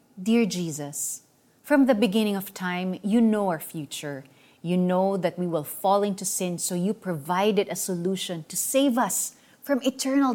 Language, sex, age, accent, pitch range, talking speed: Filipino, female, 30-49, native, 175-255 Hz, 170 wpm